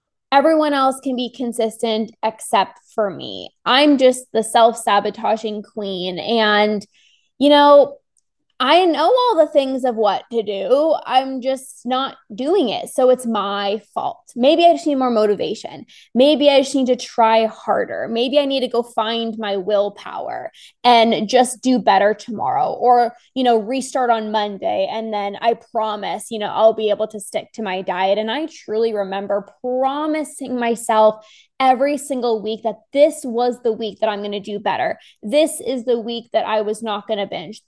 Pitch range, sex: 215-260 Hz, female